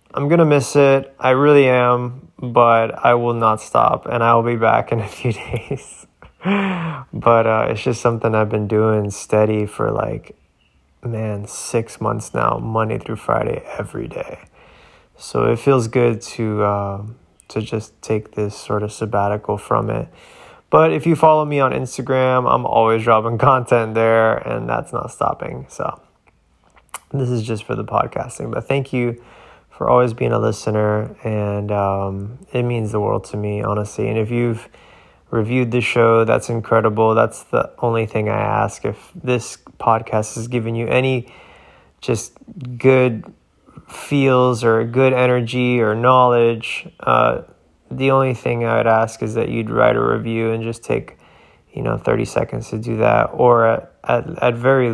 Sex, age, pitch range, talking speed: male, 20-39, 110-125 Hz, 165 wpm